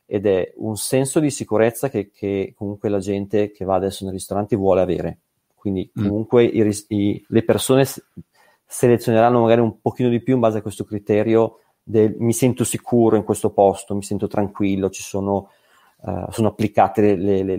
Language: Italian